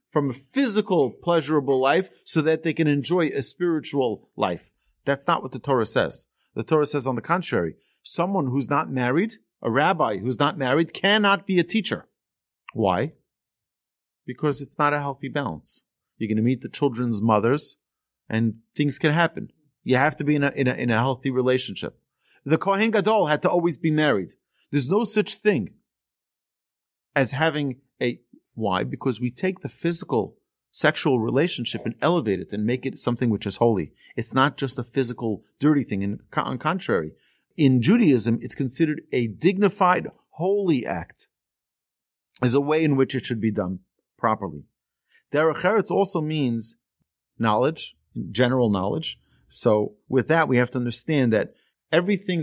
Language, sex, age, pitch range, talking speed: English, male, 40-59, 120-165 Hz, 165 wpm